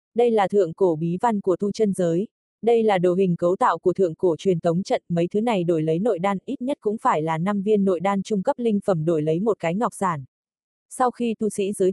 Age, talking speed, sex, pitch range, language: 20-39, 265 wpm, female, 175-220 Hz, Vietnamese